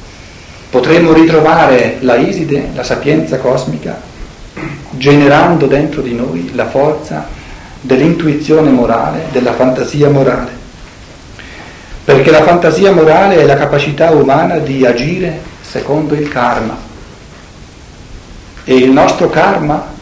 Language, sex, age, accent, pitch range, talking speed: Italian, male, 50-69, native, 125-155 Hz, 105 wpm